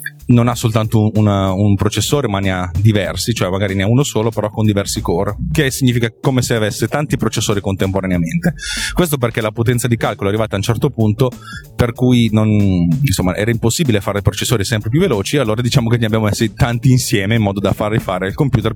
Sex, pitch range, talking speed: male, 100-125 Hz, 210 wpm